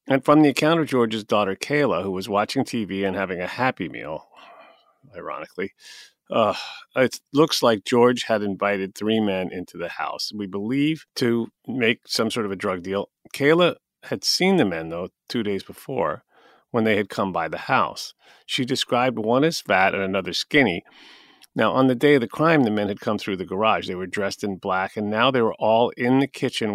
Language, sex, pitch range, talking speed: English, male, 100-130 Hz, 205 wpm